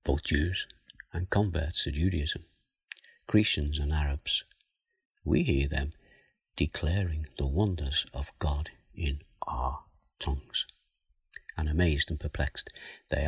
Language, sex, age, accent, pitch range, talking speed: English, male, 60-79, British, 75-100 Hz, 115 wpm